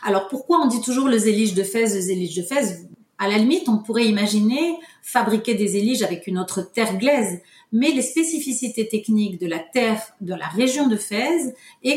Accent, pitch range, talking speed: French, 205-255 Hz, 200 wpm